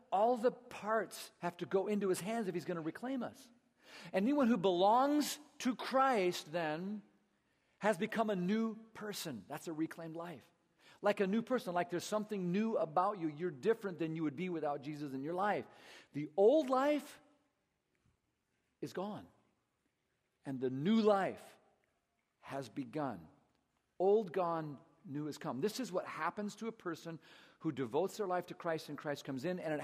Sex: male